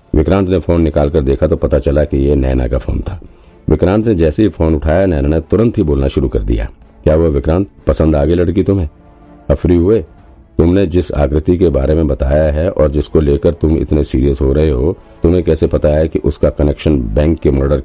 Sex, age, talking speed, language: male, 50-69, 210 wpm, Hindi